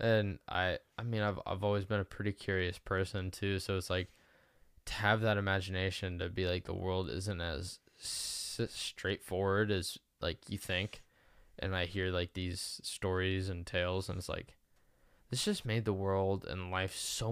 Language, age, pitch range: English, 10-29, 90-105 Hz